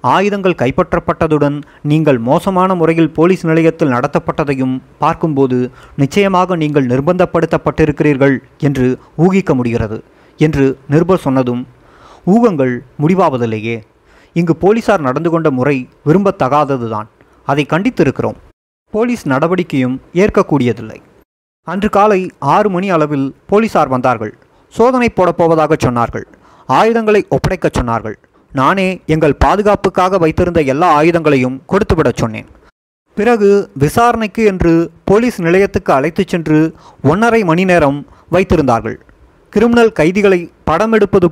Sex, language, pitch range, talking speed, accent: male, Tamil, 140-185 Hz, 95 wpm, native